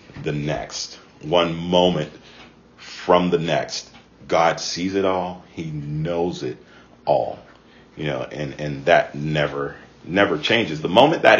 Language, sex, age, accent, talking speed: English, male, 40-59, American, 135 wpm